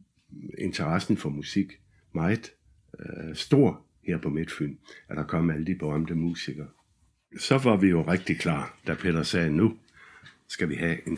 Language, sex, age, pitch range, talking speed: Danish, male, 60-79, 75-100 Hz, 160 wpm